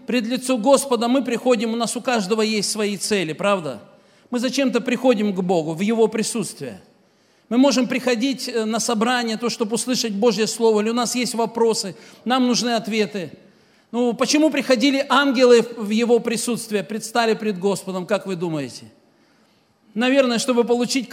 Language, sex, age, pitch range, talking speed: Russian, male, 50-69, 220-265 Hz, 155 wpm